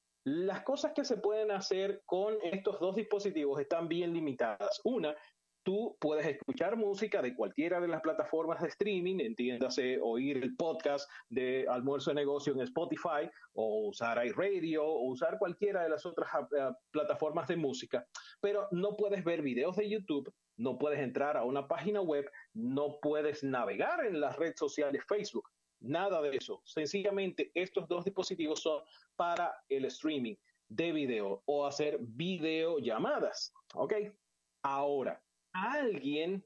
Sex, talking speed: male, 145 wpm